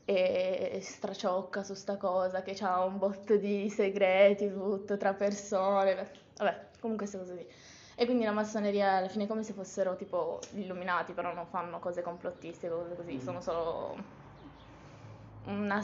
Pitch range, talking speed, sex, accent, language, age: 185-225 Hz, 155 wpm, female, native, Italian, 20-39